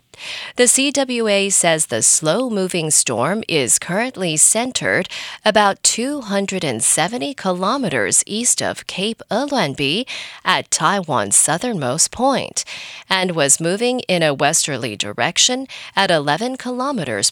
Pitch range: 155-230 Hz